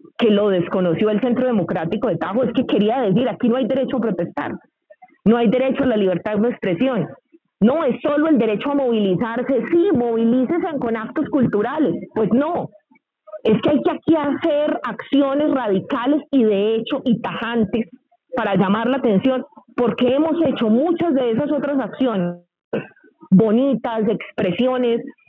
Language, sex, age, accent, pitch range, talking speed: Spanish, female, 30-49, Colombian, 225-285 Hz, 160 wpm